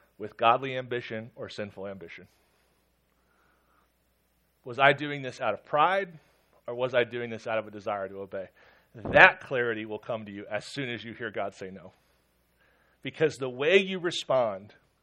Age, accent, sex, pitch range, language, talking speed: 40-59, American, male, 100-145 Hz, English, 170 wpm